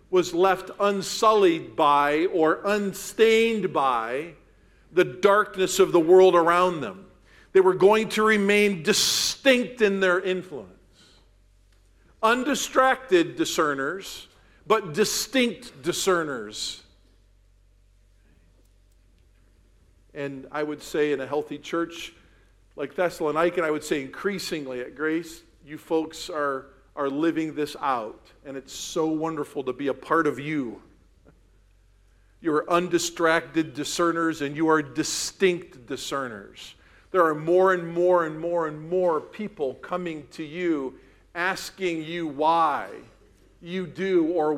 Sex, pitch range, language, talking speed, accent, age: male, 130-185 Hz, English, 120 wpm, American, 50-69